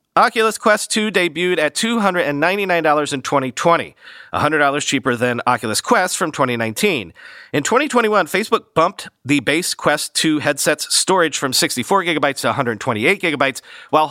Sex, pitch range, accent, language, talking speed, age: male, 135-170 Hz, American, English, 130 wpm, 40-59